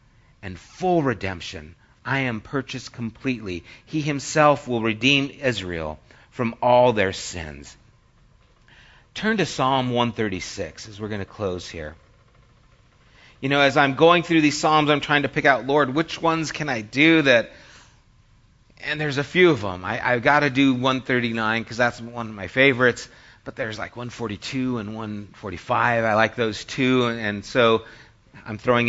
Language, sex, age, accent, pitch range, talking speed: English, male, 40-59, American, 105-135 Hz, 160 wpm